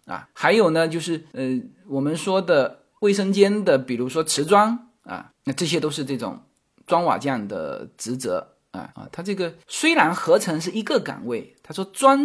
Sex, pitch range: male, 140-230 Hz